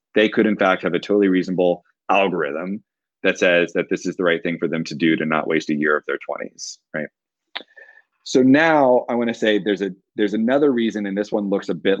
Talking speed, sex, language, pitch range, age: 235 wpm, male, English, 90-115 Hz, 30-49